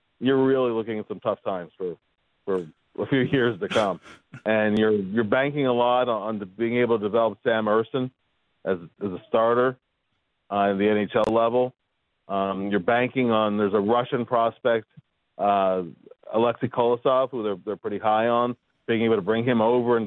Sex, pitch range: male, 105-125 Hz